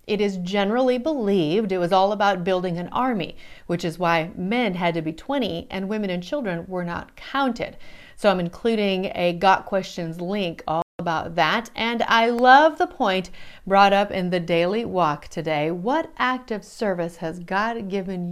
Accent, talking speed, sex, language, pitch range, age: American, 180 wpm, female, English, 170-215 Hz, 40-59